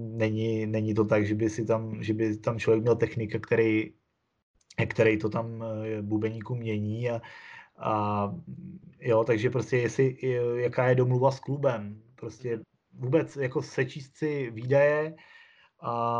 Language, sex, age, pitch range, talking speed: Czech, male, 20-39, 115-135 Hz, 140 wpm